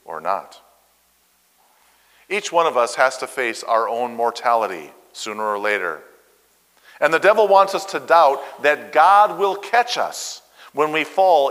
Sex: male